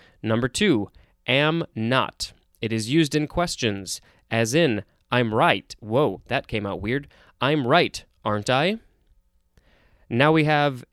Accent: American